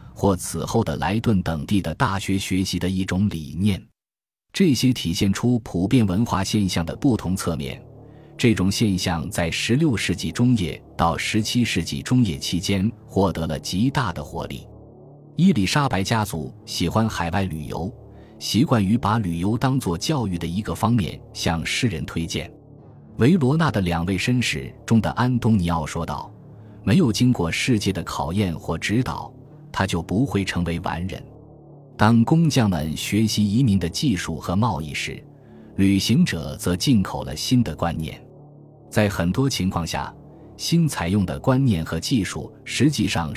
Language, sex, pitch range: Chinese, male, 85-125 Hz